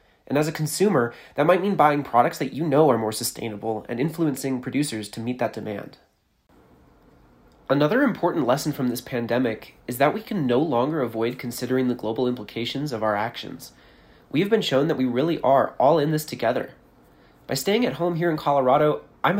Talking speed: 190 wpm